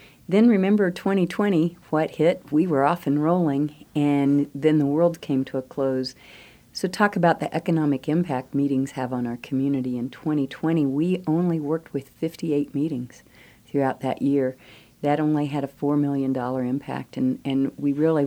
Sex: female